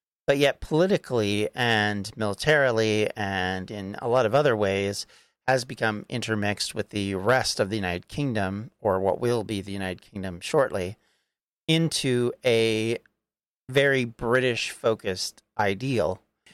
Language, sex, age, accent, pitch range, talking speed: English, male, 40-59, American, 105-125 Hz, 125 wpm